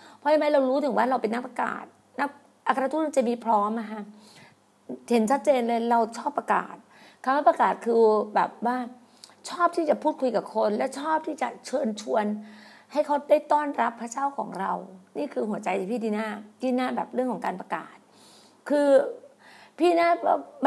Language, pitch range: Thai, 225-290 Hz